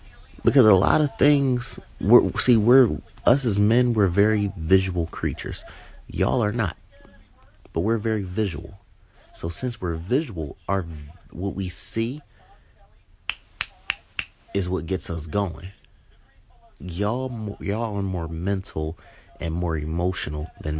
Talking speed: 125 wpm